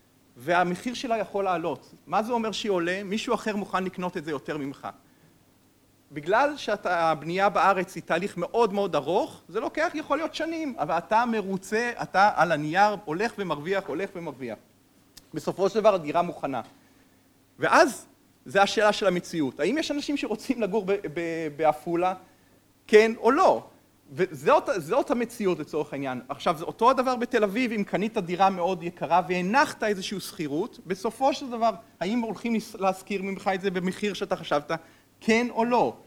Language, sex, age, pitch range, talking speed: Hebrew, male, 50-69, 165-220 Hz, 155 wpm